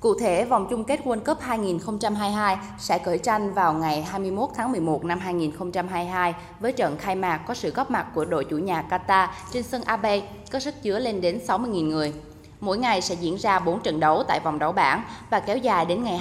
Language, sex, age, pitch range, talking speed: Vietnamese, female, 10-29, 165-215 Hz, 215 wpm